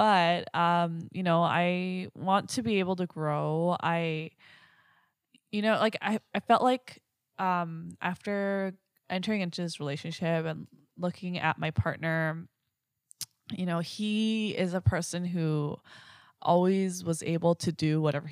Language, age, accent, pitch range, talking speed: English, 20-39, American, 150-180 Hz, 140 wpm